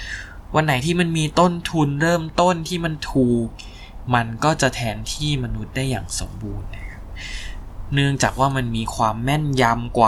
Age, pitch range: 20-39, 100-130 Hz